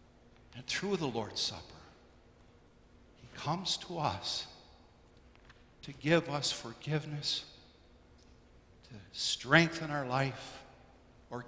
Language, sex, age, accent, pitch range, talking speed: English, male, 60-79, American, 120-155 Hz, 95 wpm